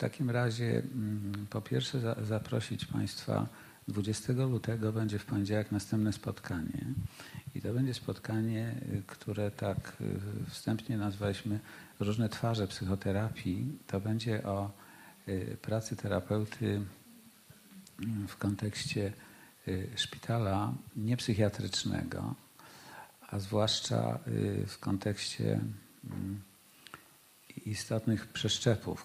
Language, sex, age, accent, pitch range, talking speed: Polish, male, 50-69, native, 95-115 Hz, 85 wpm